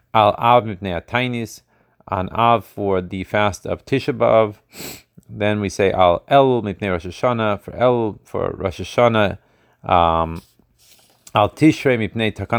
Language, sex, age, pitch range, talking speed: Hebrew, male, 30-49, 95-120 Hz, 80 wpm